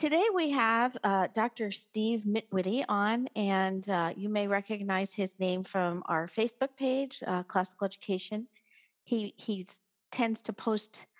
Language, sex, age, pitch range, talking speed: English, female, 40-59, 190-225 Hz, 145 wpm